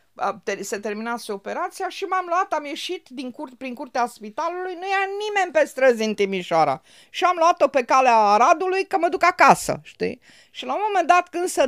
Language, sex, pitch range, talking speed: Romanian, female, 170-260 Hz, 195 wpm